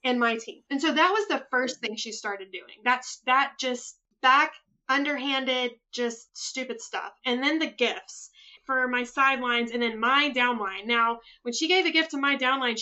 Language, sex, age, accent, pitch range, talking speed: English, female, 20-39, American, 245-310 Hz, 190 wpm